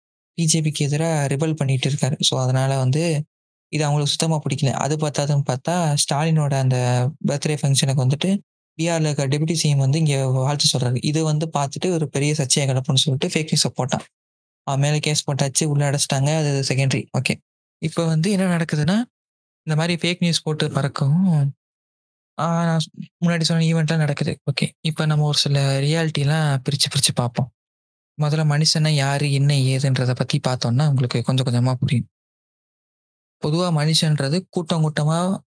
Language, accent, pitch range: Tamil, native, 135-160 Hz